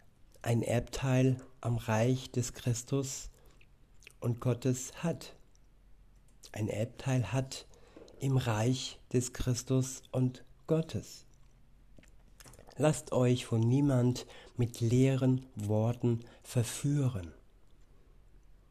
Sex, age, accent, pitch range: male, 60-79, German, 115-130 Hz